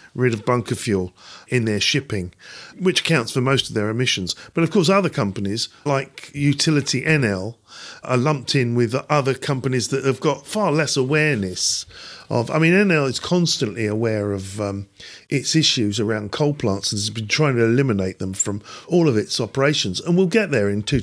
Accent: British